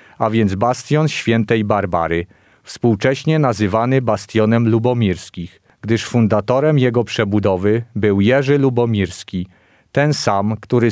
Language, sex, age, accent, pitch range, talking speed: Polish, male, 40-59, native, 105-130 Hz, 105 wpm